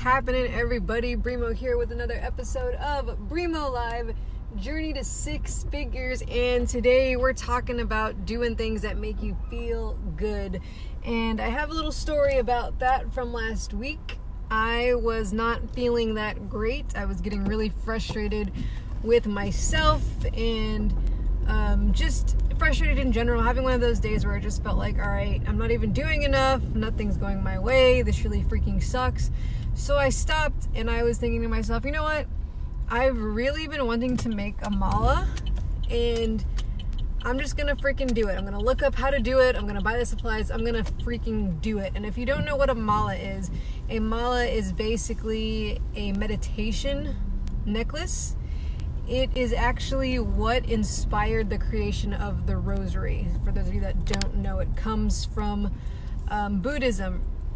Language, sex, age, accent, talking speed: English, female, 20-39, American, 170 wpm